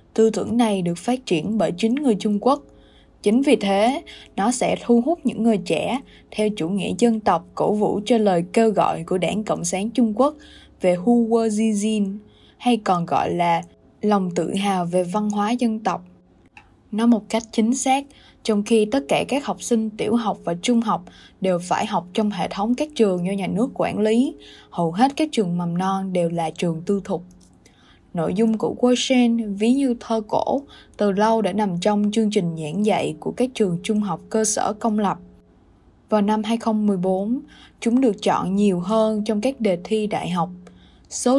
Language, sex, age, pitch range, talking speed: Vietnamese, female, 10-29, 180-230 Hz, 195 wpm